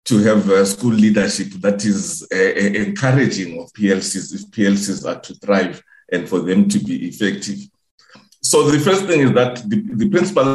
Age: 50-69